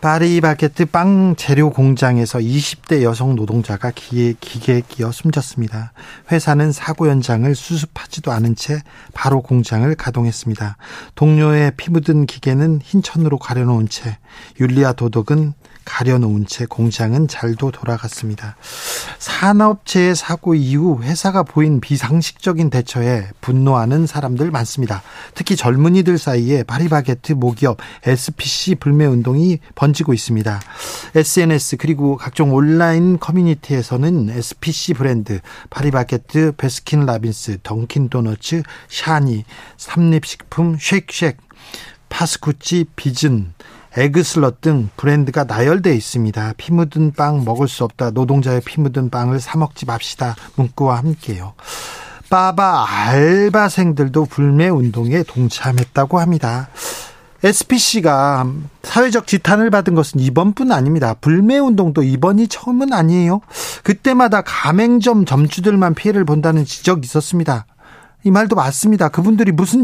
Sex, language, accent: male, Korean, native